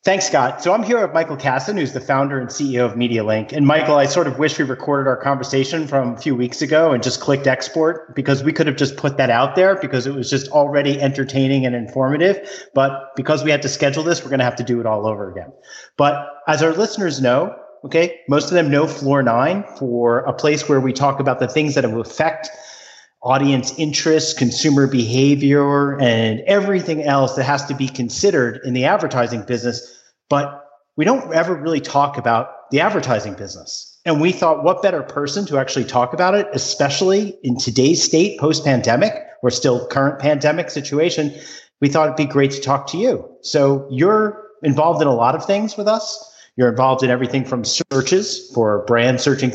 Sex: male